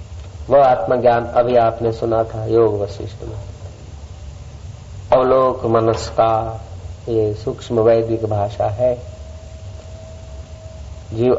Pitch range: 100-135 Hz